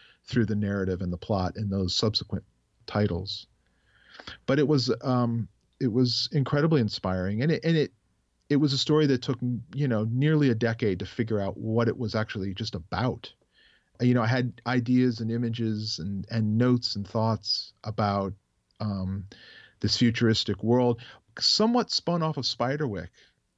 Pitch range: 100-120 Hz